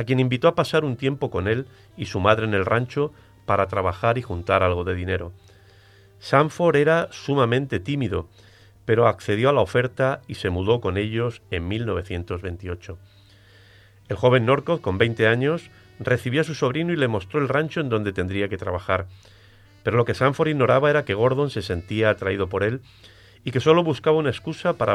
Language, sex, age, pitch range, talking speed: Spanish, male, 40-59, 95-130 Hz, 190 wpm